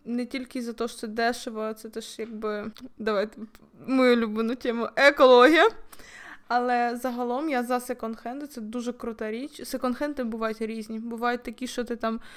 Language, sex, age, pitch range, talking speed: Ukrainian, female, 20-39, 225-250 Hz, 160 wpm